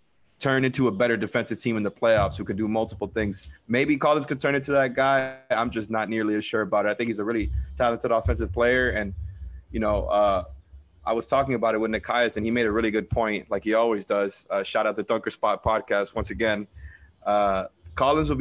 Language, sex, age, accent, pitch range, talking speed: English, male, 20-39, American, 105-125 Hz, 230 wpm